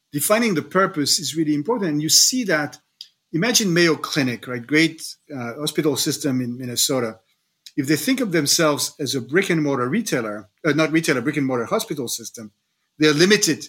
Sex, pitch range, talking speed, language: male, 135-165 Hz, 175 wpm, English